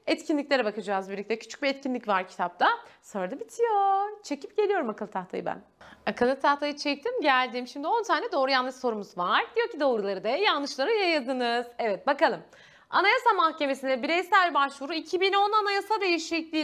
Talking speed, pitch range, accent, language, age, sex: 150 wpm, 215-335 Hz, native, Turkish, 30-49, female